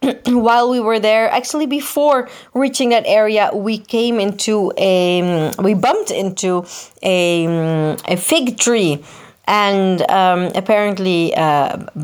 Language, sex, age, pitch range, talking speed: Italian, female, 20-39, 185-245 Hz, 120 wpm